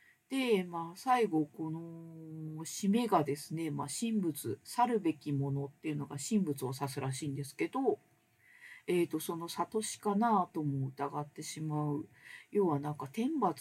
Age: 50-69